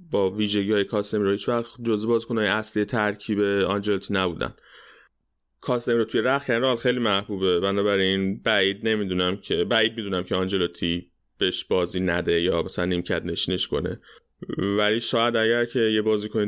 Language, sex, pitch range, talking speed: Persian, male, 100-120 Hz, 140 wpm